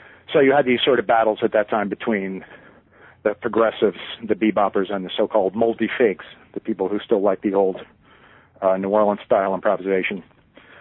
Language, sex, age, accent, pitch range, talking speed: English, male, 50-69, American, 105-135 Hz, 165 wpm